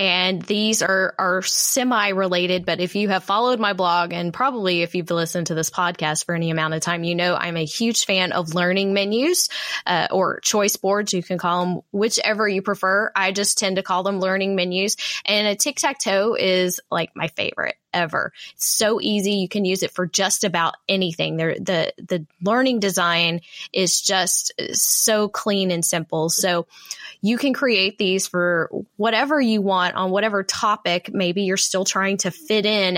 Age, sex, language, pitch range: 10-29, female, English, 175-205 Hz